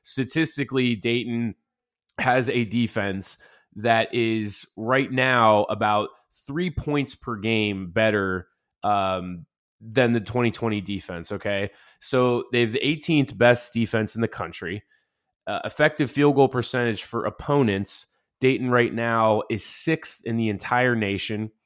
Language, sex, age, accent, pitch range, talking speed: English, male, 20-39, American, 110-140 Hz, 130 wpm